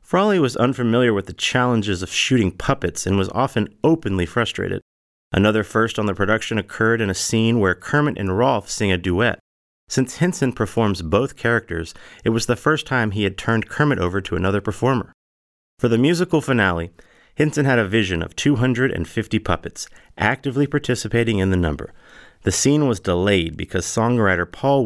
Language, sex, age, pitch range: English, male, 30-49, 95-125 Hz